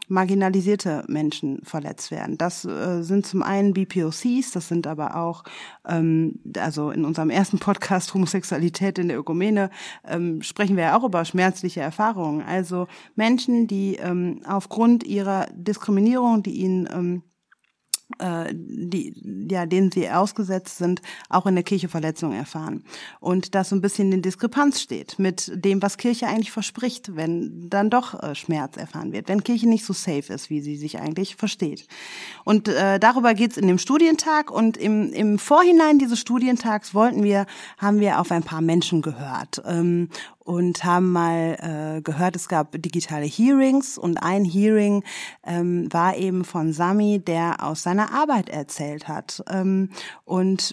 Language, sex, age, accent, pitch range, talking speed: German, female, 30-49, German, 170-210 Hz, 160 wpm